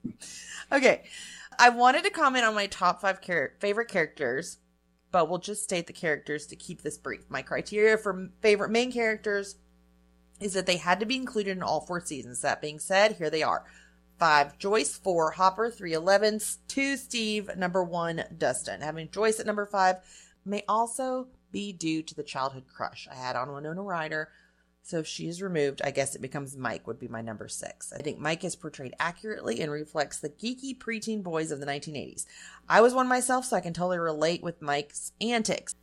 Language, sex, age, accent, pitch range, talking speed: English, female, 30-49, American, 150-205 Hz, 195 wpm